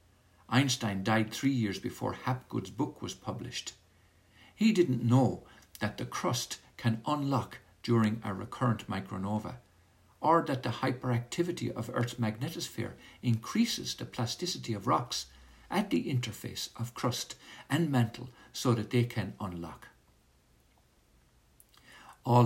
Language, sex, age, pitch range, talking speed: English, male, 60-79, 105-125 Hz, 125 wpm